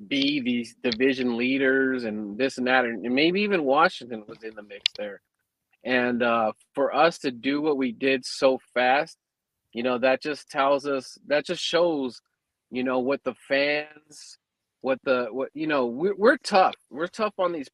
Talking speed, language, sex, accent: 180 wpm, English, male, American